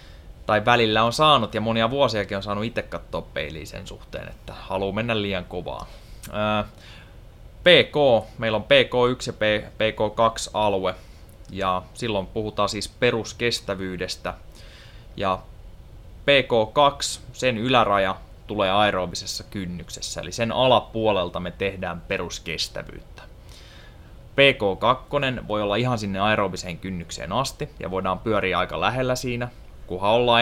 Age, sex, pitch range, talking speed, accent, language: 20-39, male, 95-115 Hz, 120 wpm, native, Finnish